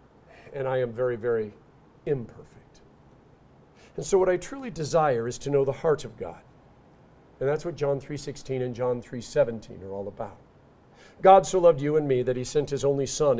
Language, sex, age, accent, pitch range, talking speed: English, male, 50-69, American, 130-175 Hz, 190 wpm